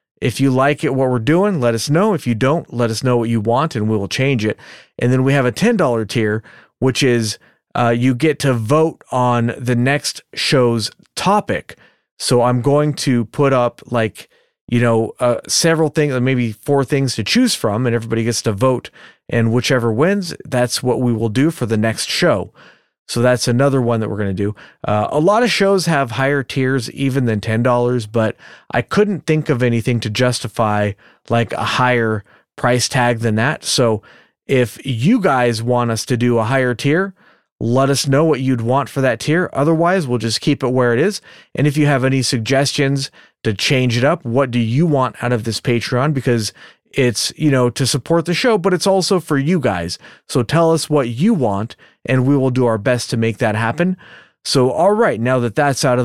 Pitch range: 120-150 Hz